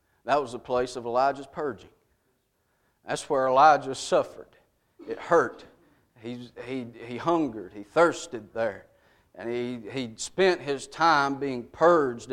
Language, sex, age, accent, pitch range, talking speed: English, male, 40-59, American, 115-135 Hz, 125 wpm